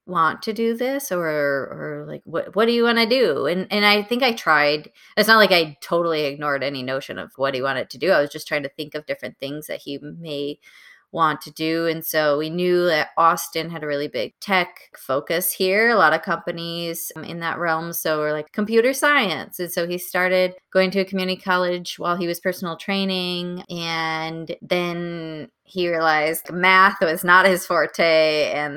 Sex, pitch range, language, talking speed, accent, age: female, 155-190 Hz, English, 205 wpm, American, 20-39